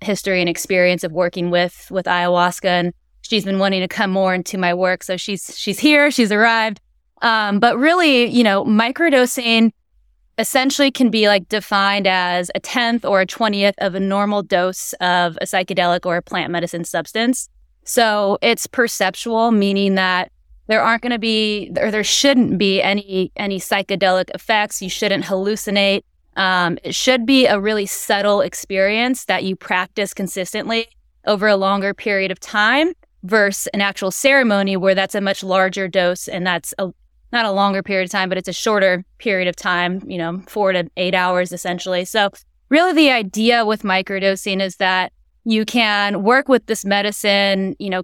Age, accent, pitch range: 20-39, American, 185-220 Hz